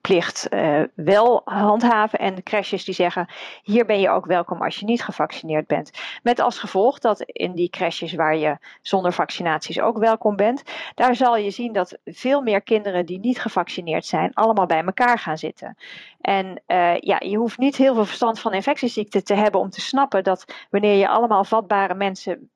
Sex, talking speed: female, 185 wpm